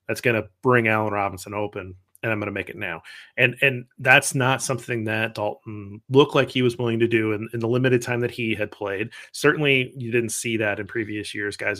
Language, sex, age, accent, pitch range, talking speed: English, male, 30-49, American, 115-145 Hz, 225 wpm